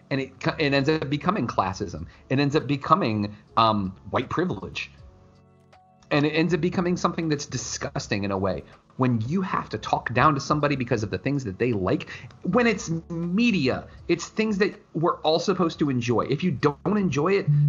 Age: 30-49